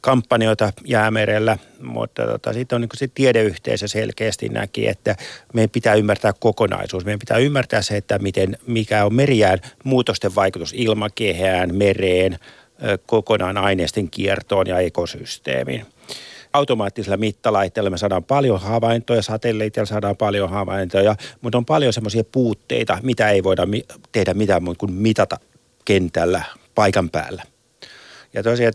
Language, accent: Finnish, native